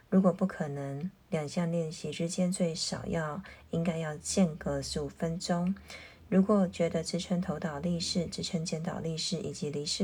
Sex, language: female, Chinese